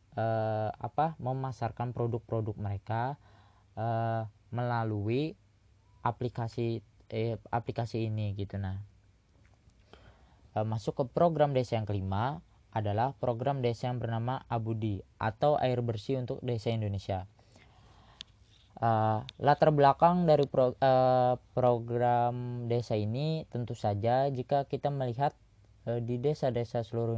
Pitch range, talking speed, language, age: 105-125 Hz, 110 wpm, Indonesian, 20-39